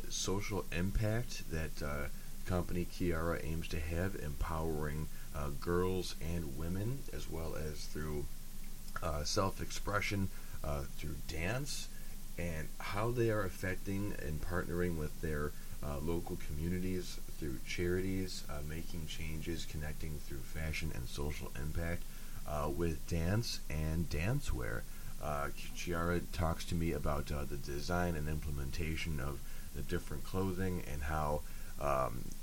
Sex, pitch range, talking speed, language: male, 75-85 Hz, 130 wpm, English